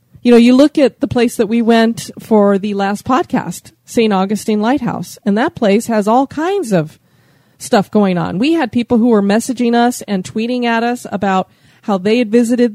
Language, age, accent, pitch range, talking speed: English, 30-49, American, 190-235 Hz, 200 wpm